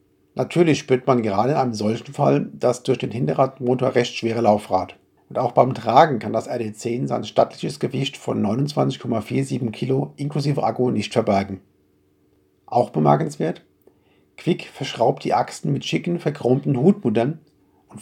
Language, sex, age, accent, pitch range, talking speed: German, male, 50-69, German, 105-140 Hz, 145 wpm